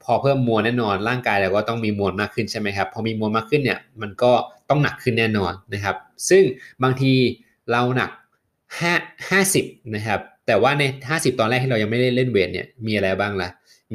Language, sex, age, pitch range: Thai, male, 20-39, 105-125 Hz